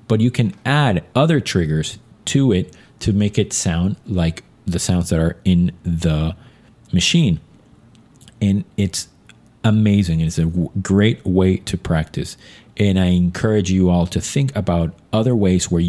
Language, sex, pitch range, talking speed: English, male, 90-110 Hz, 150 wpm